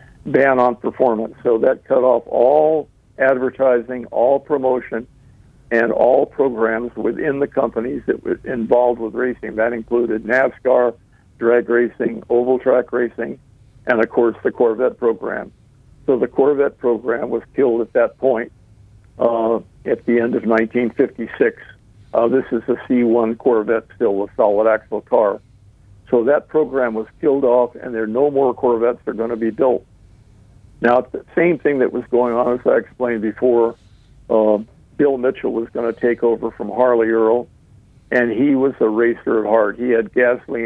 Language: English